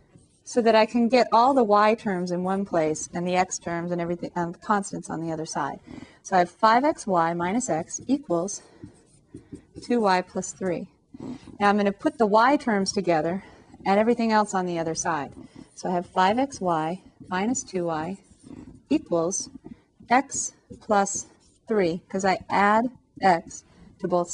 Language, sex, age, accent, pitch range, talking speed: English, female, 30-49, American, 180-245 Hz, 165 wpm